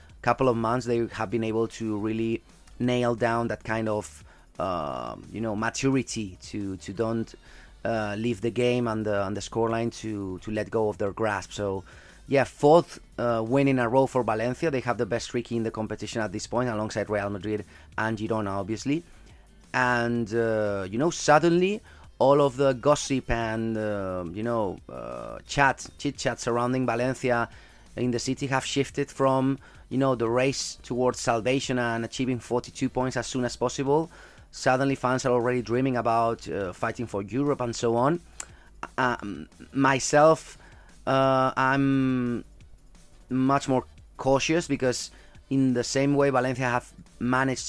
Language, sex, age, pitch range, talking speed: English, male, 30-49, 110-130 Hz, 165 wpm